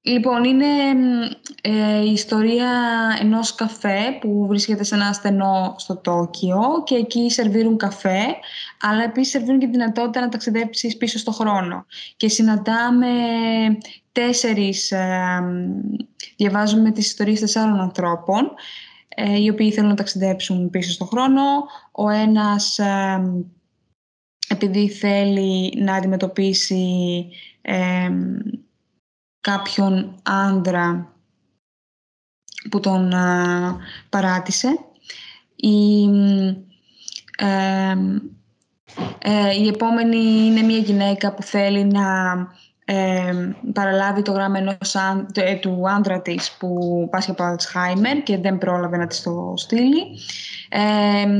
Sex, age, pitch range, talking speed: female, 20-39, 190-225 Hz, 105 wpm